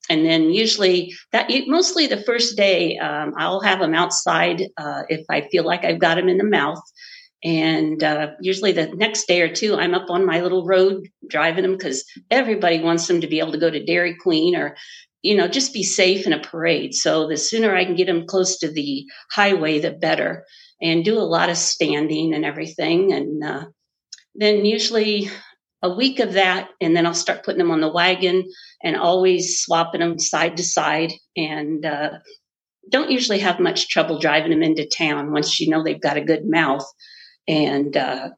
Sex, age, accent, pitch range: female, 50-69, American, 160-200 Hz